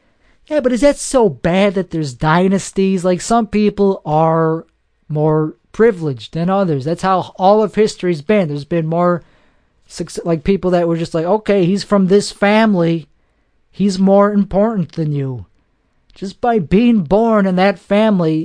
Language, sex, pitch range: English, male, 160-210 Hz